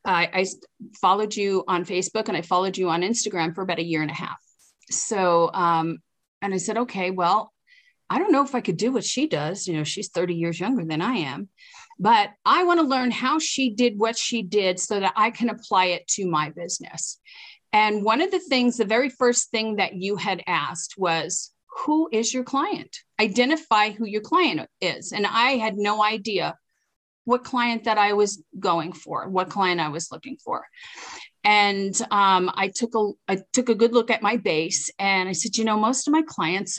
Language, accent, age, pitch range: English, American, 40-59, 180-235 Hz